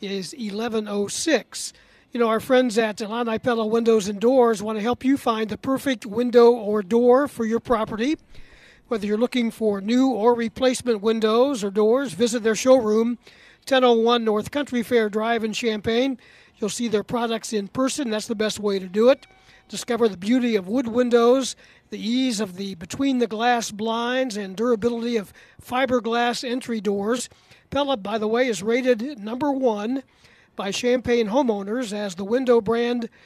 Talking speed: 165 wpm